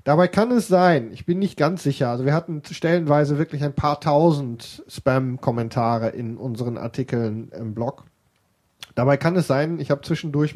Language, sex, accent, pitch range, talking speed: German, male, German, 120-150 Hz, 170 wpm